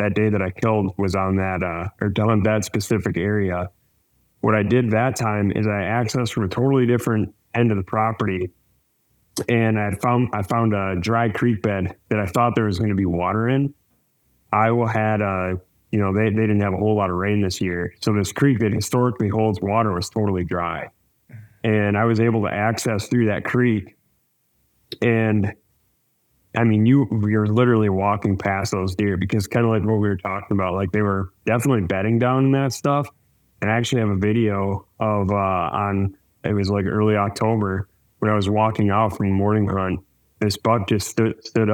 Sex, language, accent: male, English, American